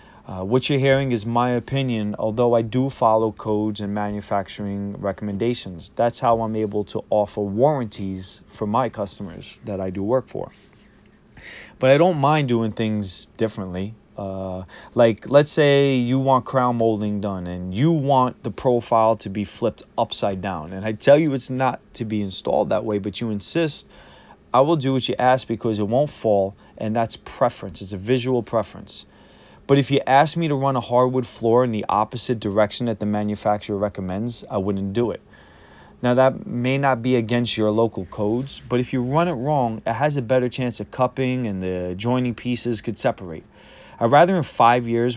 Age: 20-39